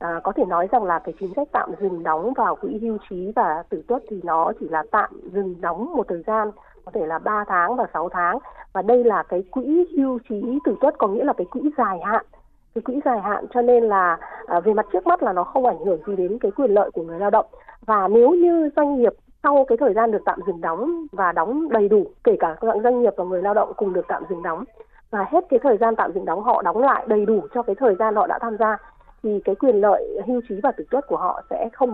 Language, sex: Vietnamese, female